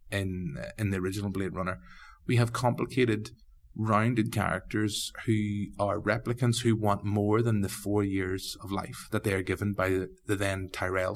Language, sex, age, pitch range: English, male, 30-49, 100-120 Hz